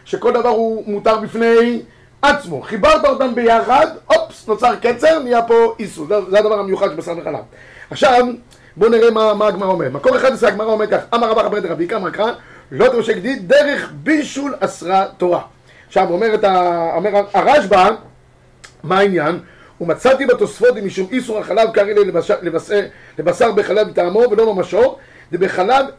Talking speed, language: 150 wpm, Hebrew